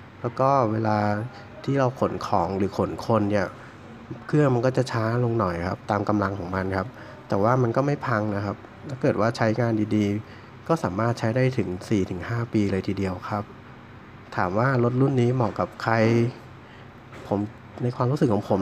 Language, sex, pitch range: Thai, male, 105-125 Hz